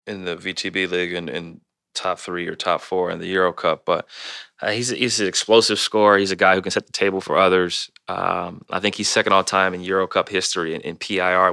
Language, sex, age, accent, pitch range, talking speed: English, male, 20-39, American, 90-95 Hz, 245 wpm